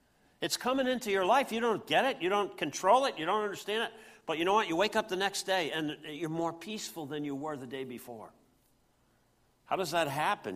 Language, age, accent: English, 60-79, American